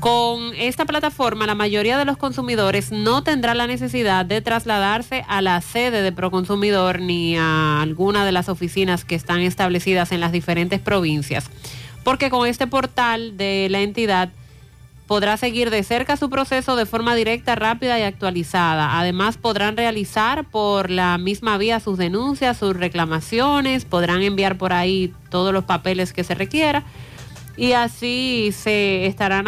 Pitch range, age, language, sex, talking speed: 180-230 Hz, 30-49, Spanish, female, 155 wpm